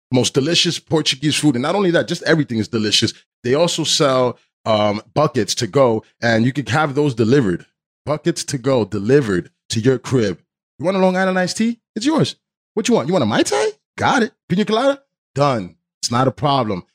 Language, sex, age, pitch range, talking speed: English, male, 30-49, 120-160 Hz, 205 wpm